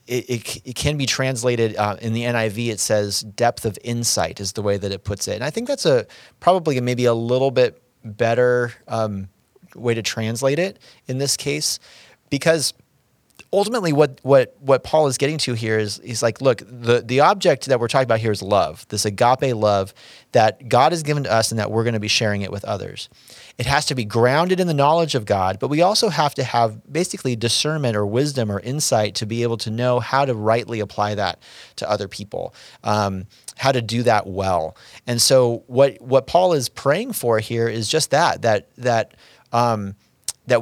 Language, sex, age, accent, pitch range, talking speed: English, male, 30-49, American, 110-130 Hz, 210 wpm